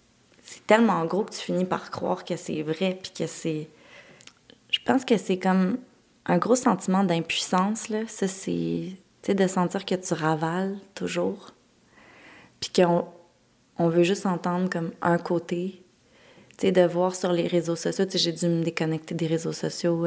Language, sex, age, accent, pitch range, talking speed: French, female, 20-39, Canadian, 160-180 Hz, 175 wpm